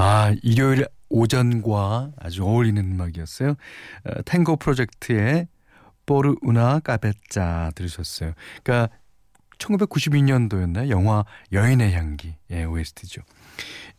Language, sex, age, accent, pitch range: Korean, male, 40-59, native, 95-145 Hz